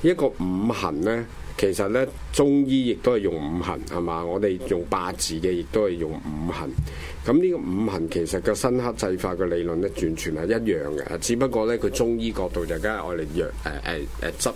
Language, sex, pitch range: Chinese, male, 80-105 Hz